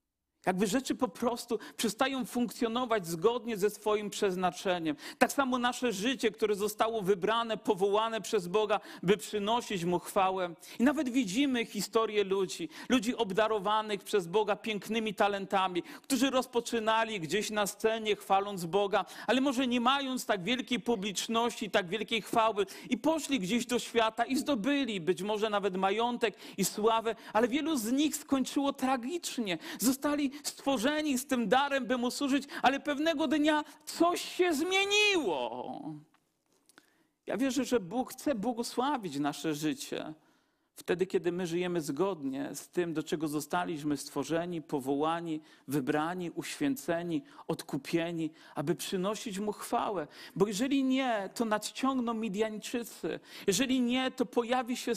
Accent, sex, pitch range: native, male, 205-265 Hz